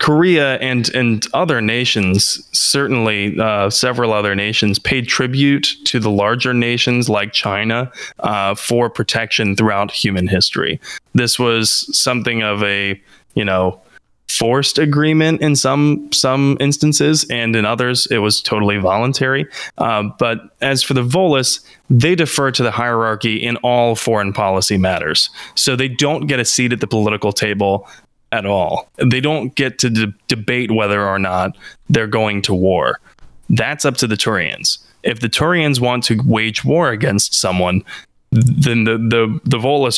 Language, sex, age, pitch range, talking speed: English, male, 20-39, 105-130 Hz, 155 wpm